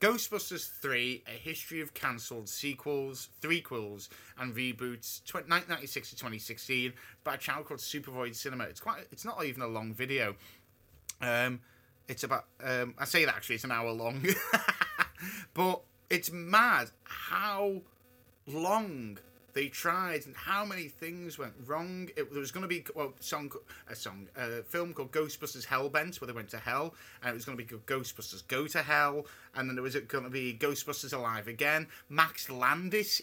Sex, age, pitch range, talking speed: male, 30-49, 125-170 Hz, 170 wpm